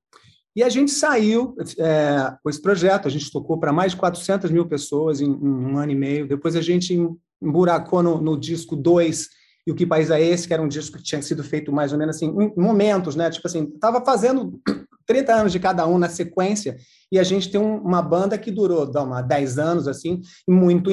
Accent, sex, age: Brazilian, male, 30-49